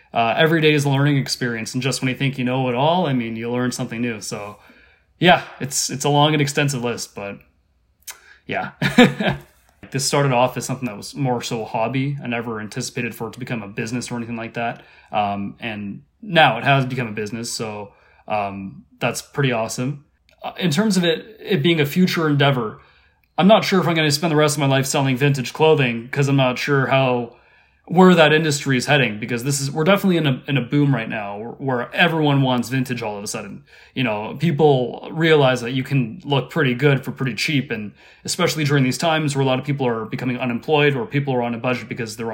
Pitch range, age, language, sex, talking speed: 120-145 Hz, 20-39, English, male, 225 wpm